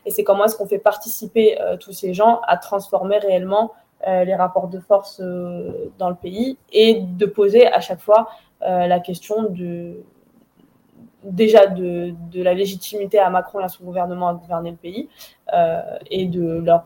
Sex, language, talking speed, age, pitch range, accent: female, French, 185 wpm, 20-39, 190-220 Hz, French